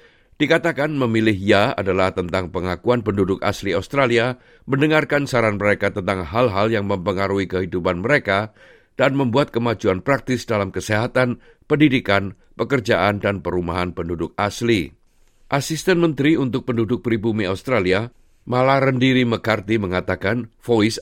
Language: Indonesian